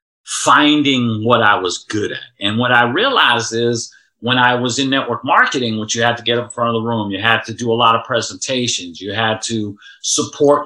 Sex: male